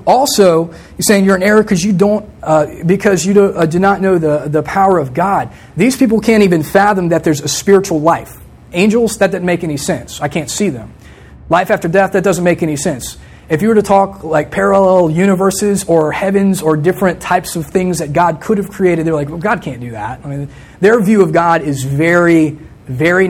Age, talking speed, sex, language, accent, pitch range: 30-49, 220 wpm, male, English, American, 145-195 Hz